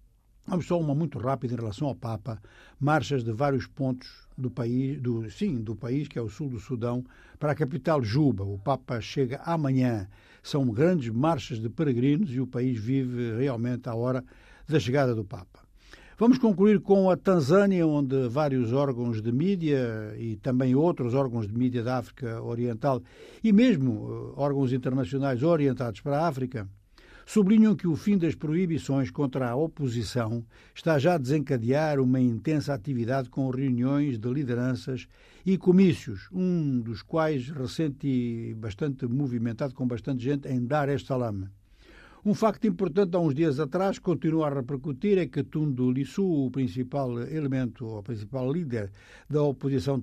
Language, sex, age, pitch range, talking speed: Portuguese, male, 60-79, 120-155 Hz, 155 wpm